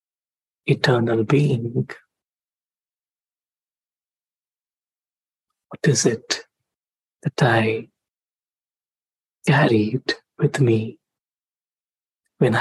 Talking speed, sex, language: 50 wpm, male, English